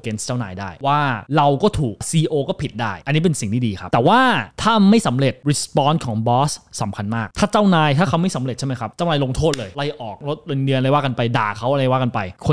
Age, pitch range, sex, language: 20-39, 115-150 Hz, male, Thai